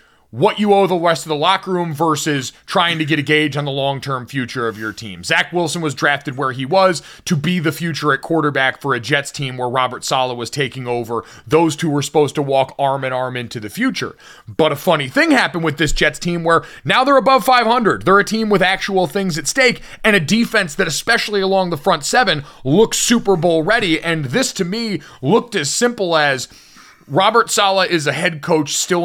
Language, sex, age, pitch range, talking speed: English, male, 30-49, 145-190 Hz, 215 wpm